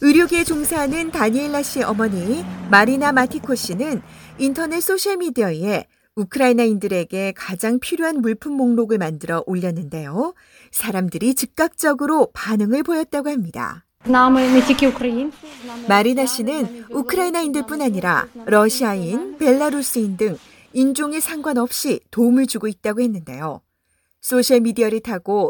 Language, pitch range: Korean, 215-290 Hz